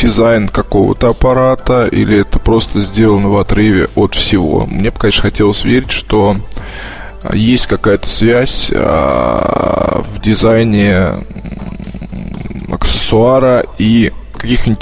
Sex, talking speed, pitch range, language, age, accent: male, 100 wpm, 100-120 Hz, Russian, 20-39, native